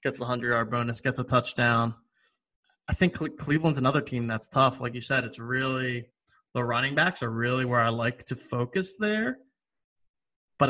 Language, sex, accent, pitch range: English, male, American, 120-145 Hz